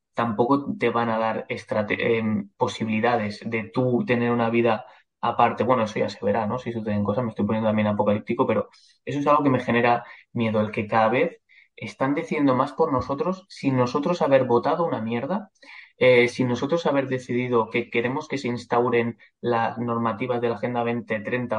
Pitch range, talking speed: 110-125 Hz, 190 wpm